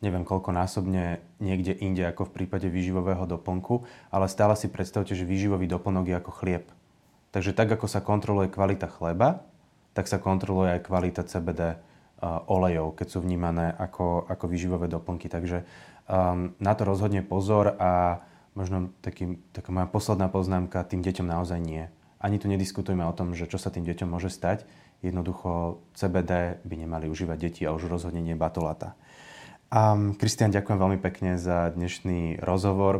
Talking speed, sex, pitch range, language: 160 wpm, male, 90-95 Hz, Slovak